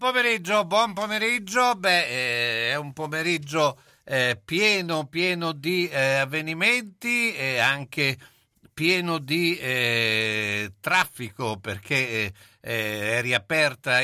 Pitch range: 110-155 Hz